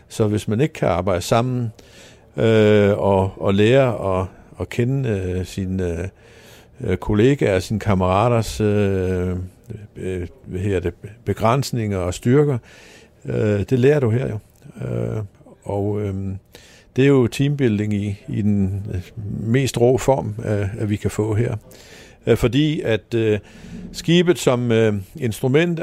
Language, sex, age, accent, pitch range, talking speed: Danish, male, 60-79, native, 100-120 Hz, 140 wpm